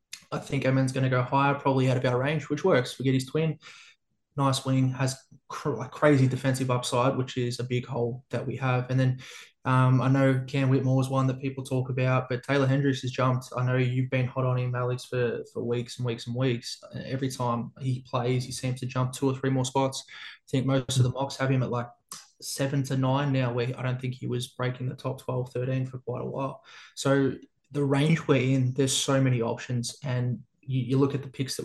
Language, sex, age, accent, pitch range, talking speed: English, male, 20-39, Australian, 125-135 Hz, 235 wpm